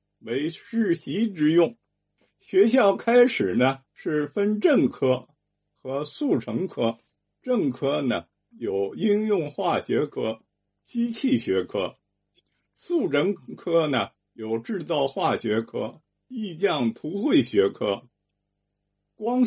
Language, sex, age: Chinese, male, 50-69